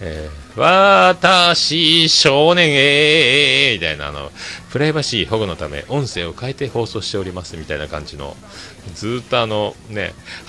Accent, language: native, Japanese